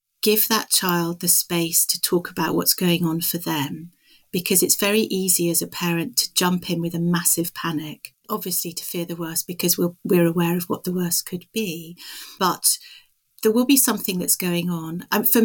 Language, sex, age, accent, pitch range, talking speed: English, female, 40-59, British, 170-195 Hz, 200 wpm